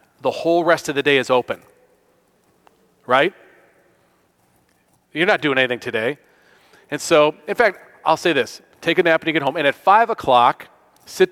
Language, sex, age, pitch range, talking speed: English, male, 40-59, 135-170 Hz, 175 wpm